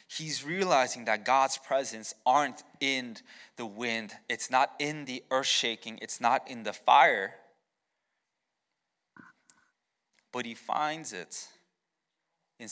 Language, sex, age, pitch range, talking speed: English, male, 20-39, 110-140 Hz, 120 wpm